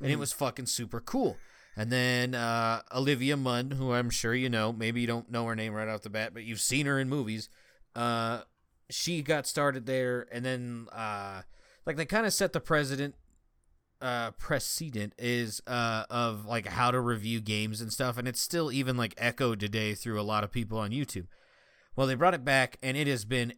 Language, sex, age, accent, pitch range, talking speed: English, male, 30-49, American, 110-135 Hz, 210 wpm